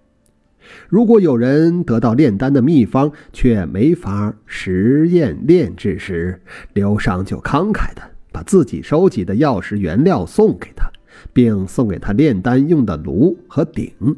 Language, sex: Chinese, male